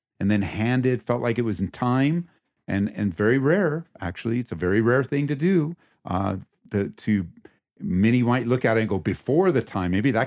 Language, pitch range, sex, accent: English, 95-125 Hz, male, American